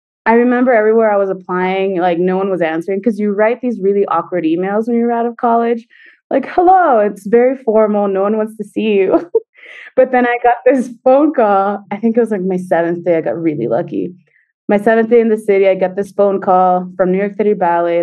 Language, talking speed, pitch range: English, 230 wpm, 175-225 Hz